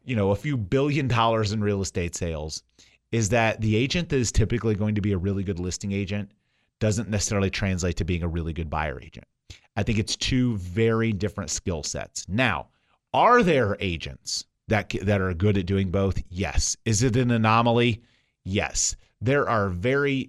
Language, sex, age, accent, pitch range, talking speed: English, male, 30-49, American, 95-115 Hz, 185 wpm